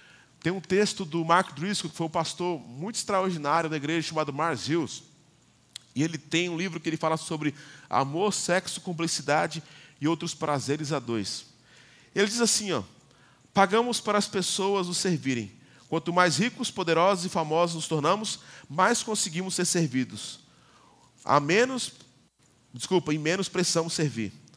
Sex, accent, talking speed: male, Brazilian, 155 wpm